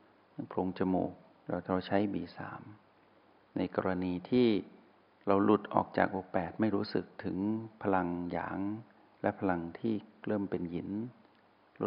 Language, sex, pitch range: Thai, male, 95-110 Hz